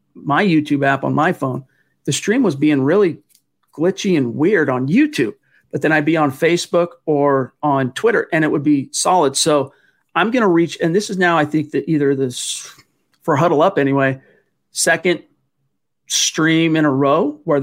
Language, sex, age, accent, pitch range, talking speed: English, male, 40-59, American, 140-155 Hz, 185 wpm